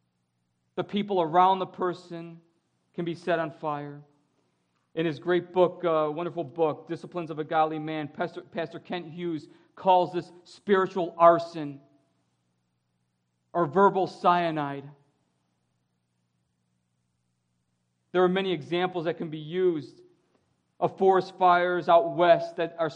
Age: 50-69